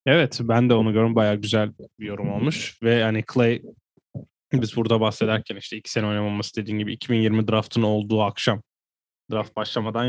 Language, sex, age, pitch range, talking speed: Turkish, male, 10-29, 105-120 Hz, 165 wpm